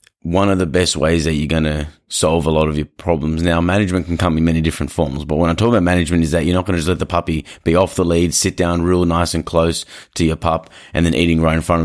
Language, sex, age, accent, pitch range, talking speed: English, male, 30-49, Australian, 80-90 Hz, 295 wpm